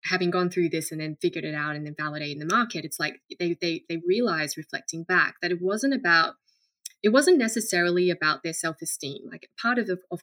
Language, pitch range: English, 160-185 Hz